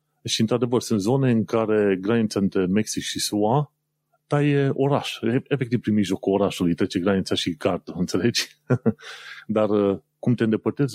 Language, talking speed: Romanian, 140 wpm